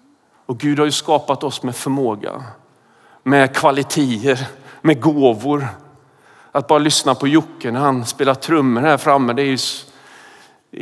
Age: 40-59